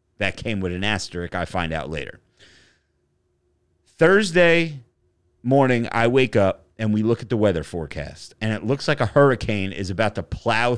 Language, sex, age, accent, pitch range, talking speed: English, male, 30-49, American, 95-140 Hz, 175 wpm